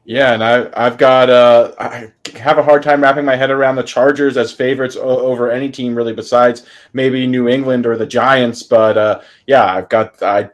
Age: 20-39